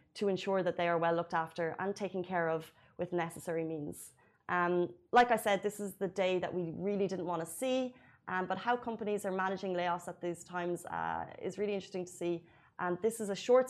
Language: Arabic